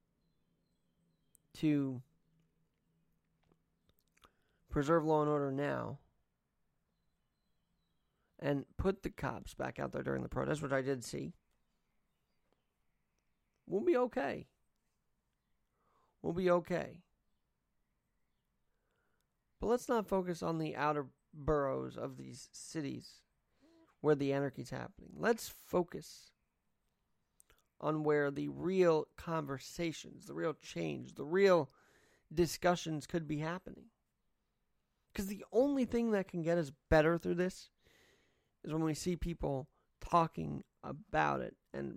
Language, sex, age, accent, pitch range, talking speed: English, male, 40-59, American, 135-170 Hz, 110 wpm